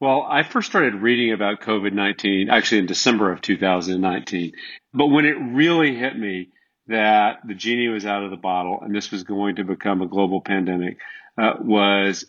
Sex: male